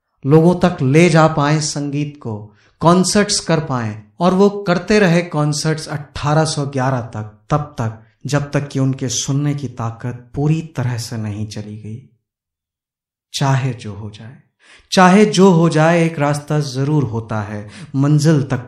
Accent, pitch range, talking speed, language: native, 110-150 Hz, 150 wpm, Hindi